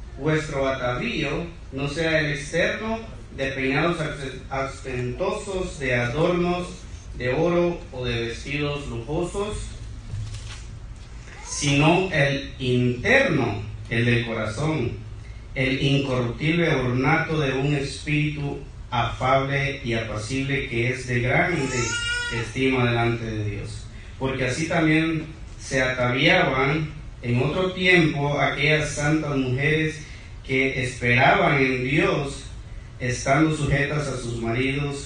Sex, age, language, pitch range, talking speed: male, 40-59, Spanish, 115-150 Hz, 105 wpm